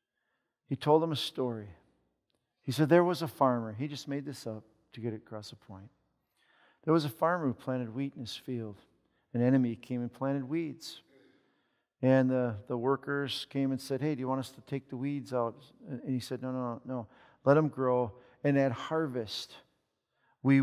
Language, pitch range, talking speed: English, 120-145 Hz, 200 wpm